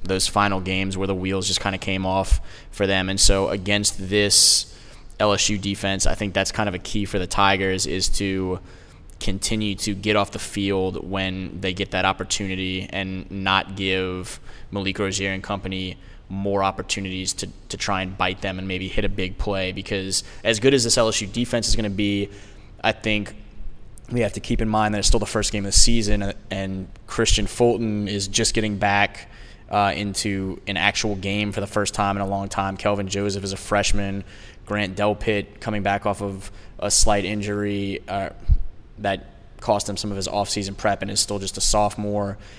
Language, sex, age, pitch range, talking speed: English, male, 10-29, 95-105 Hz, 195 wpm